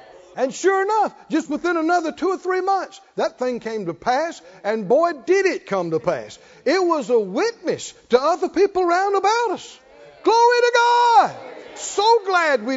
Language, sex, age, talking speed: English, male, 60-79, 180 wpm